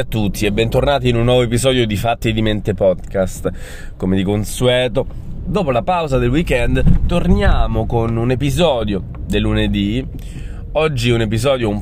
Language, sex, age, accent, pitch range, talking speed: Italian, male, 20-39, native, 95-125 Hz, 155 wpm